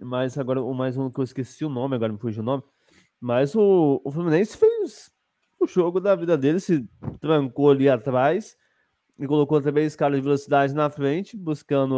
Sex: male